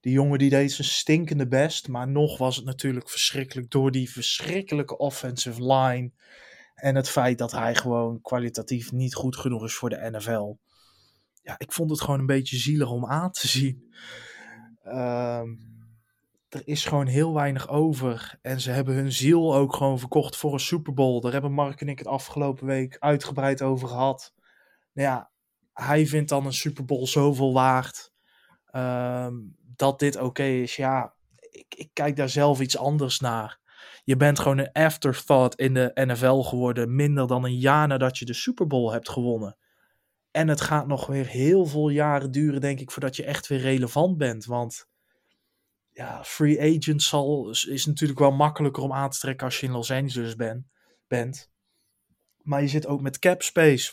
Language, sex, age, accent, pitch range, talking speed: Dutch, male, 20-39, Dutch, 125-145 Hz, 175 wpm